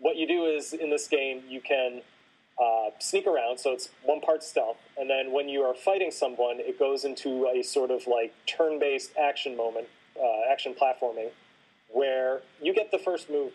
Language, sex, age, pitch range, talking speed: English, male, 30-49, 125-155 Hz, 190 wpm